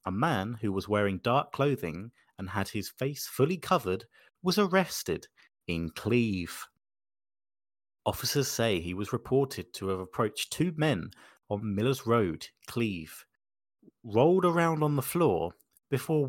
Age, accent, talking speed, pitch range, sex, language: 30-49, British, 135 wpm, 95-140 Hz, male, English